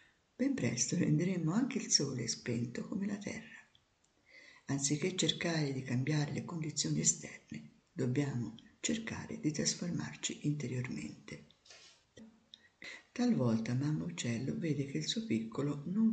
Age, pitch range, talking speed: 50-69, 140-220 Hz, 115 wpm